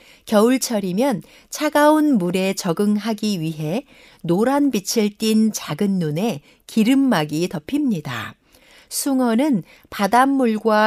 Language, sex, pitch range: Korean, female, 190-260 Hz